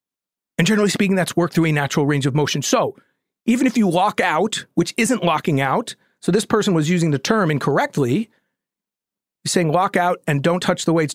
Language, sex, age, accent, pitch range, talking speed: English, male, 40-59, American, 150-205 Hz, 200 wpm